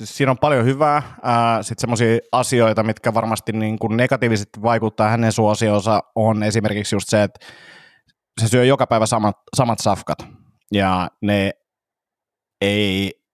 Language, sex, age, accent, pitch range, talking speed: Finnish, male, 30-49, native, 100-120 Hz, 125 wpm